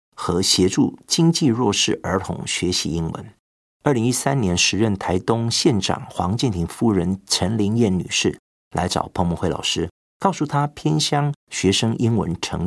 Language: Chinese